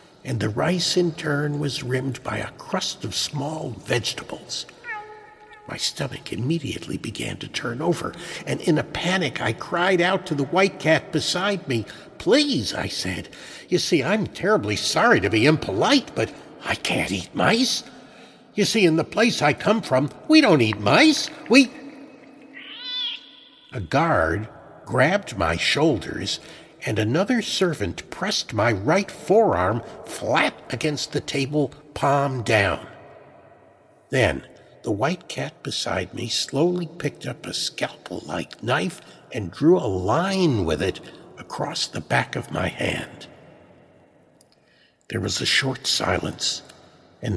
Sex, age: male, 60-79